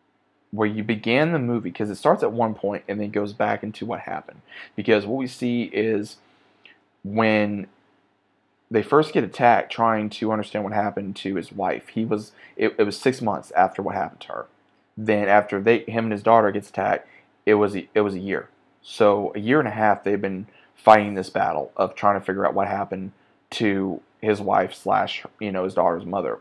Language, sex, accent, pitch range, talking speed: English, male, American, 105-120 Hz, 205 wpm